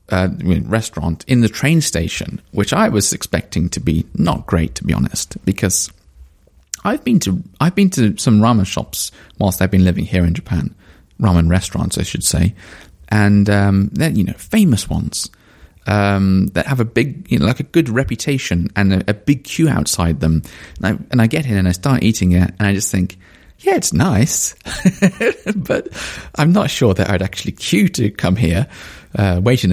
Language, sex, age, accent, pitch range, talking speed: English, male, 30-49, British, 90-125 Hz, 190 wpm